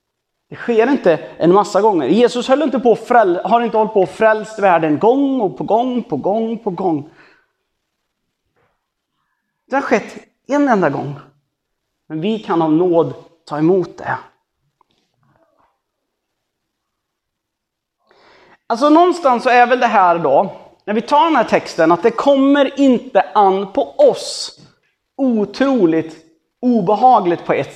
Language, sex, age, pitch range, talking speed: Swedish, male, 30-49, 160-235 Hz, 140 wpm